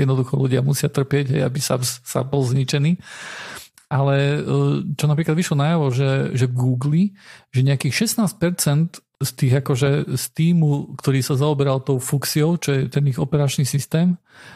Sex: male